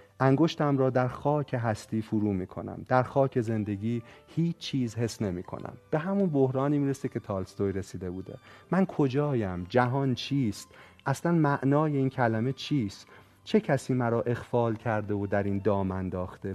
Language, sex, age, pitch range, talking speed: Persian, male, 40-59, 100-135 Hz, 155 wpm